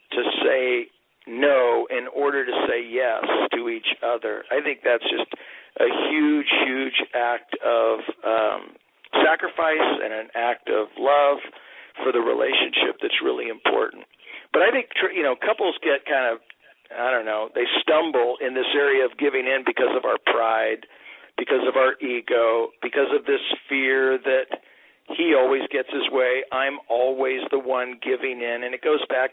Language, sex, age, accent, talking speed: English, male, 50-69, American, 165 wpm